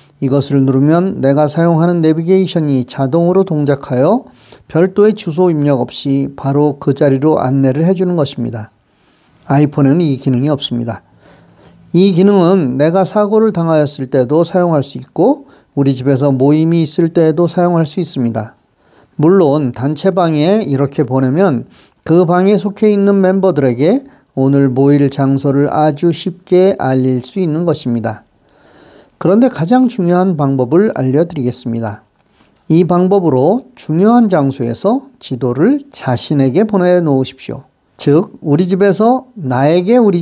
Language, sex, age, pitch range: Korean, male, 40-59, 135-190 Hz